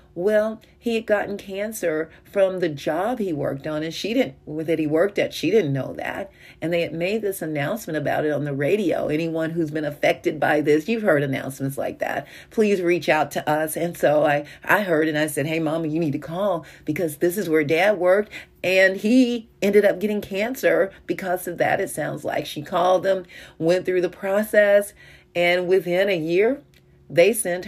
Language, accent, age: English, American, 40-59